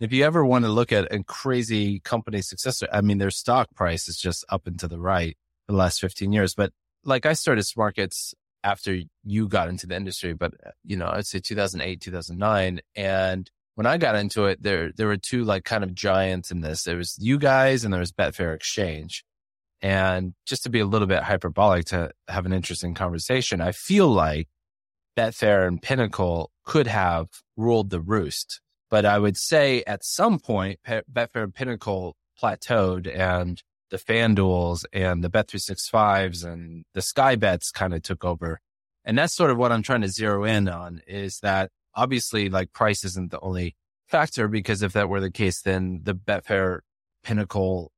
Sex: male